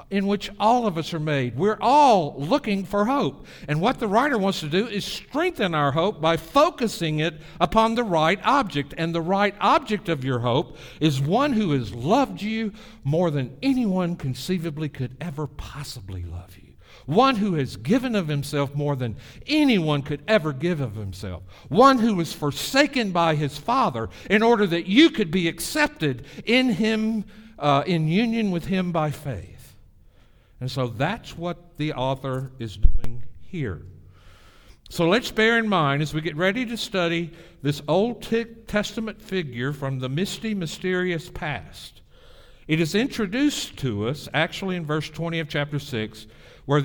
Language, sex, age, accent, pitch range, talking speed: English, male, 60-79, American, 135-205 Hz, 170 wpm